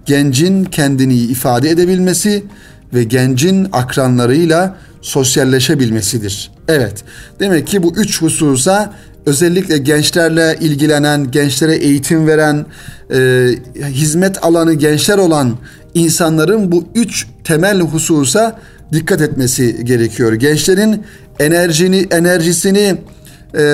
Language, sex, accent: Turkish, male, native